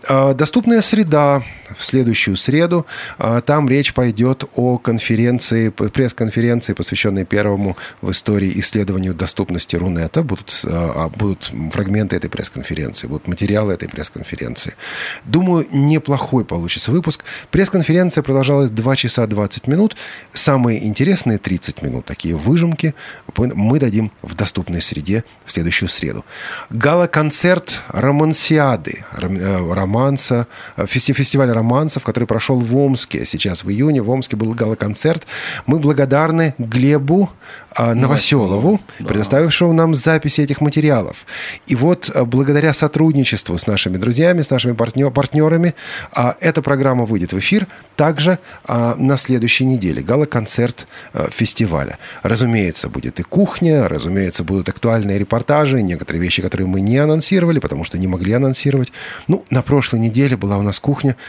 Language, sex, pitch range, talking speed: Russian, male, 100-145 Hz, 125 wpm